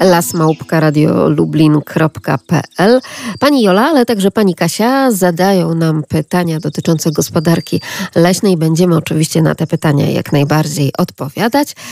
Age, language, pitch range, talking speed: 40-59, Polish, 165-210 Hz, 115 wpm